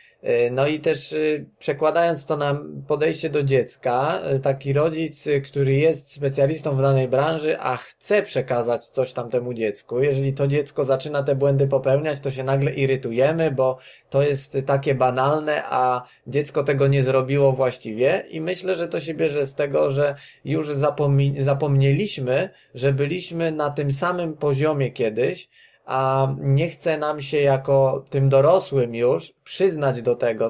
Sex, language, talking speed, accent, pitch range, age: male, Polish, 150 wpm, native, 130-150 Hz, 20-39